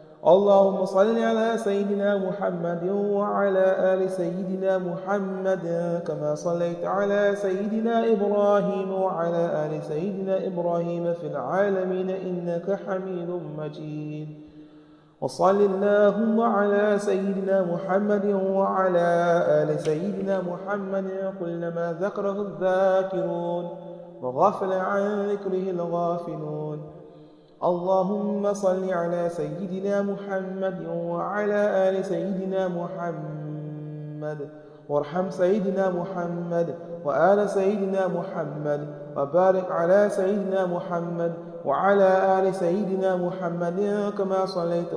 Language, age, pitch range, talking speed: English, 30-49, 170-195 Hz, 95 wpm